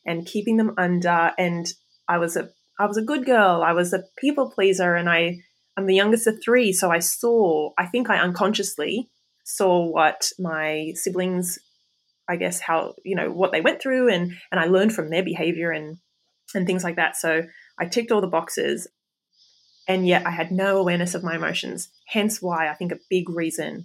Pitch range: 165-195 Hz